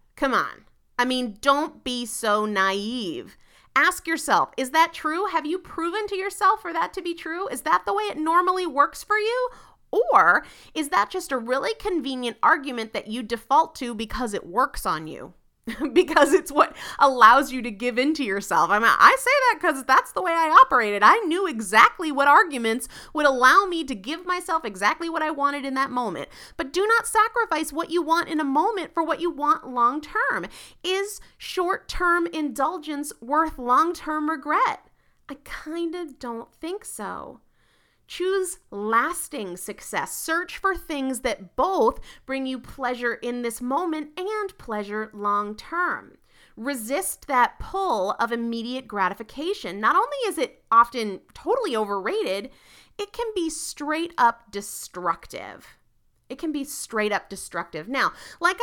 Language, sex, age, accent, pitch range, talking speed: English, female, 30-49, American, 240-350 Hz, 165 wpm